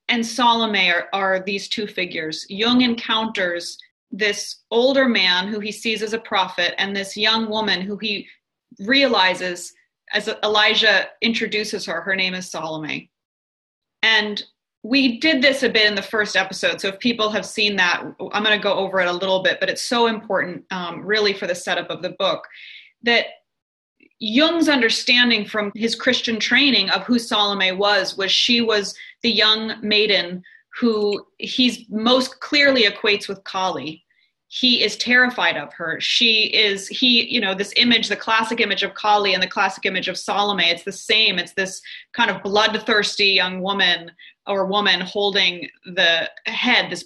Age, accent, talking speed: 30-49, American, 170 wpm